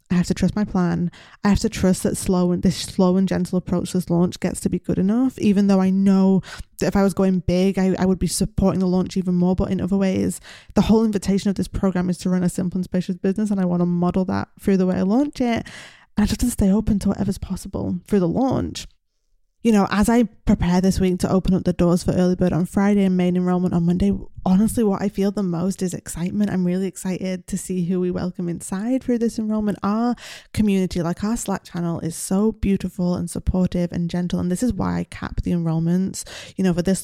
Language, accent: English, British